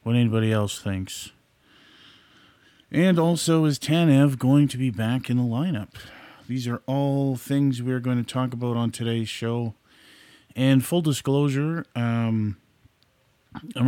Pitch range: 110-135 Hz